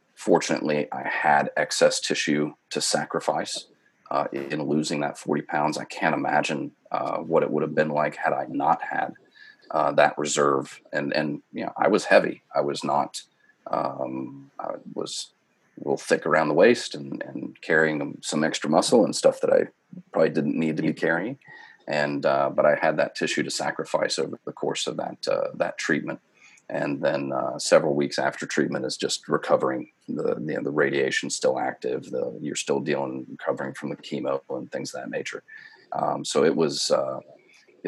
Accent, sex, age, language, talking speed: American, male, 40-59, English, 180 wpm